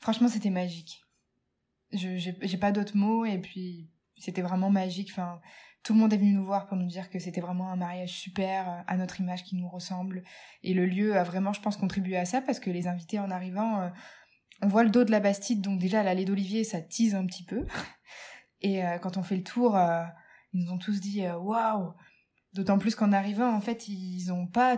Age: 20-39